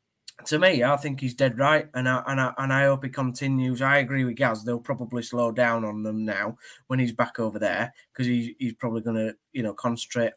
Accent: British